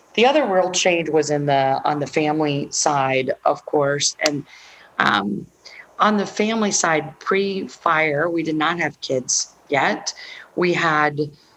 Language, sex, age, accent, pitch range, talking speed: English, female, 40-59, American, 145-165 Hz, 145 wpm